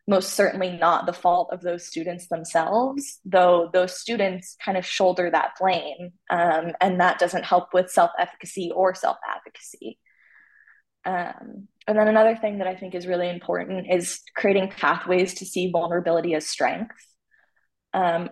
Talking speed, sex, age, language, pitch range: 145 wpm, female, 20-39, English, 175-200 Hz